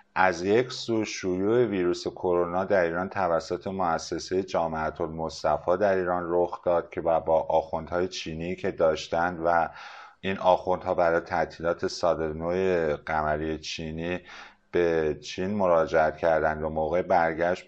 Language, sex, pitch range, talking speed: Persian, male, 80-100 Hz, 130 wpm